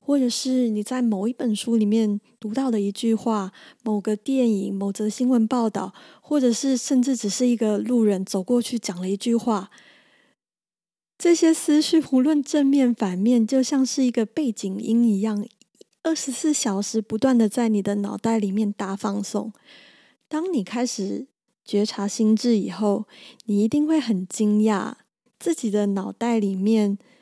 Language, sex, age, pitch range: Chinese, female, 20-39, 210-255 Hz